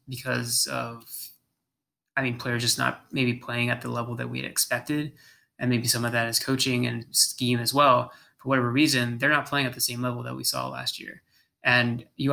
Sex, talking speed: male, 215 wpm